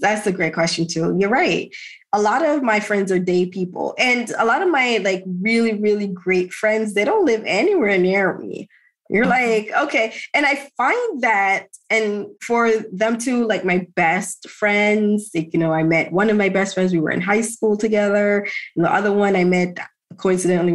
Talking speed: 200 wpm